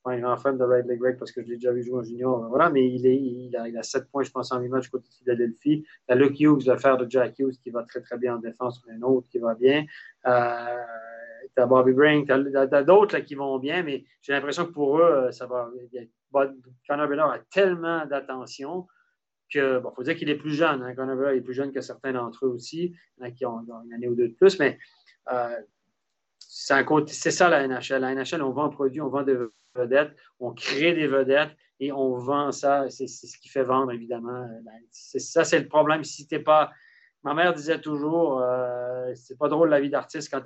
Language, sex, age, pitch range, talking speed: French, male, 30-49, 125-150 Hz, 245 wpm